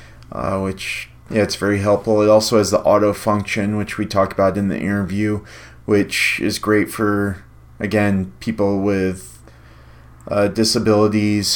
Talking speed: 145 wpm